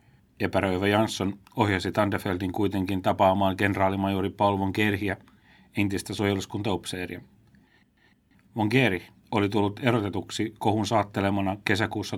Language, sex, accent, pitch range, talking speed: Finnish, male, native, 95-105 Hz, 90 wpm